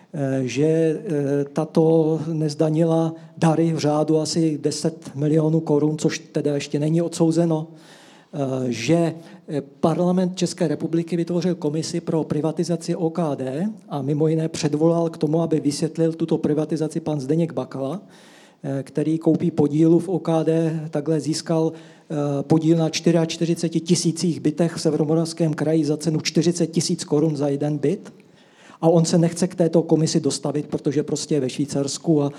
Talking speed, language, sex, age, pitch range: 135 wpm, Slovak, male, 50-69, 150-170 Hz